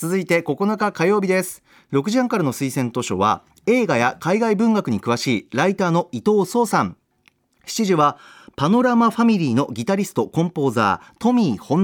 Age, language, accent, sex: 40-59, Japanese, native, male